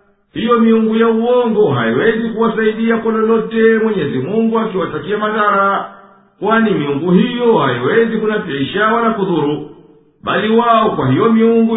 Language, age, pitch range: Swahili, 50-69, 200-225 Hz